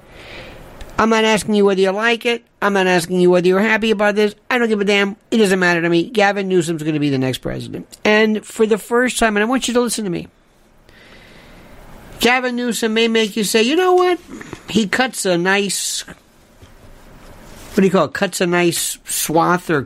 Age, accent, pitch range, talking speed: 50-69, American, 170-230 Hz, 215 wpm